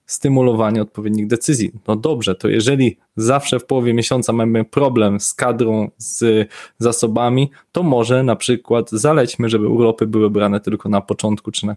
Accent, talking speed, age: native, 160 wpm, 20-39